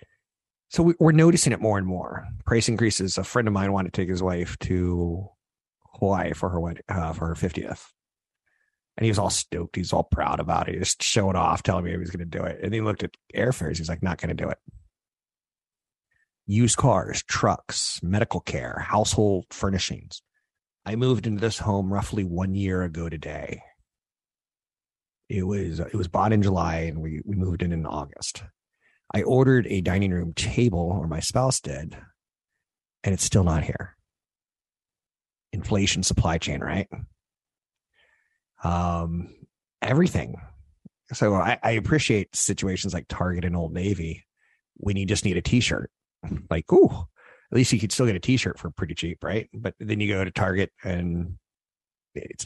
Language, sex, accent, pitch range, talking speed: English, male, American, 85-105 Hz, 175 wpm